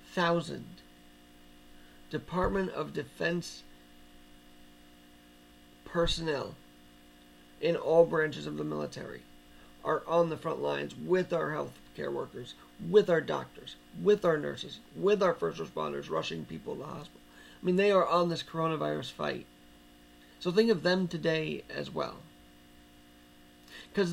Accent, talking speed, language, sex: American, 130 wpm, English, male